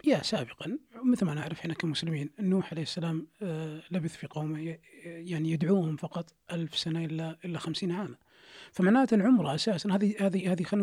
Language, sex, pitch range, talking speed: Arabic, male, 160-205 Hz, 160 wpm